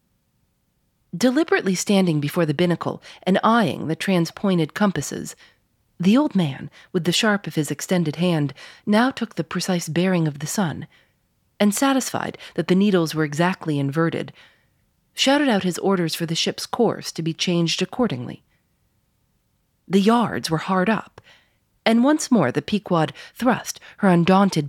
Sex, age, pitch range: female, 40-59, 165-215 Hz